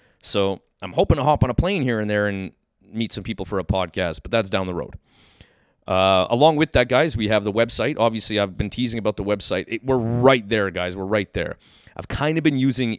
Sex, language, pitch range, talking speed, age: male, English, 100-120 Hz, 235 wpm, 30-49